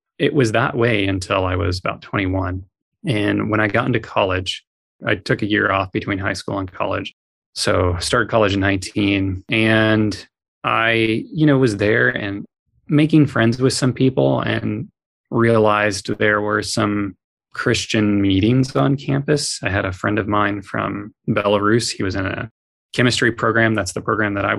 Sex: male